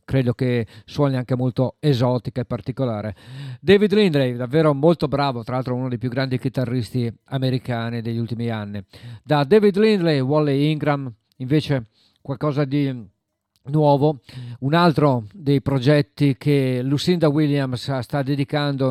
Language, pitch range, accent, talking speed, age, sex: Italian, 120-155 Hz, native, 135 wpm, 50-69, male